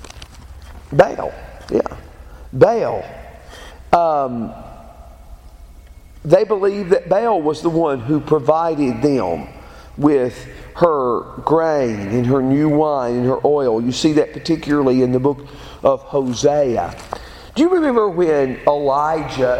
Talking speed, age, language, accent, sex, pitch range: 115 wpm, 40-59, English, American, male, 120-170 Hz